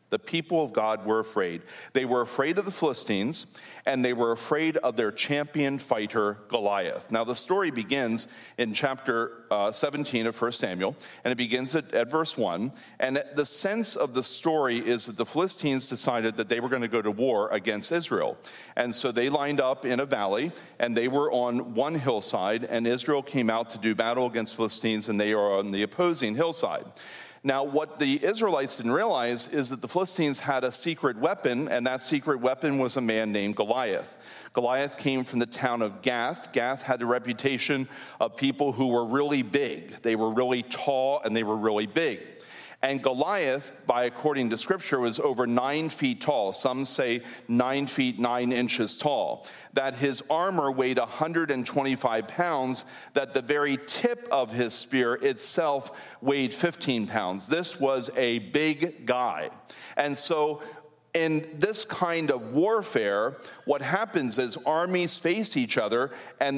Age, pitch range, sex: 40-59, 120-150 Hz, male